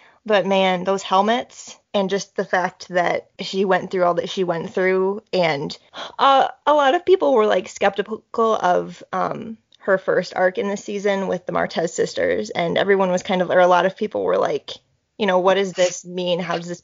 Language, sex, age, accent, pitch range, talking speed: English, female, 20-39, American, 180-225 Hz, 210 wpm